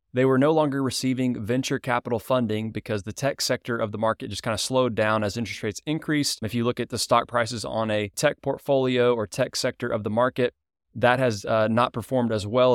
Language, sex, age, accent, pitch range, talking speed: English, male, 20-39, American, 110-130 Hz, 225 wpm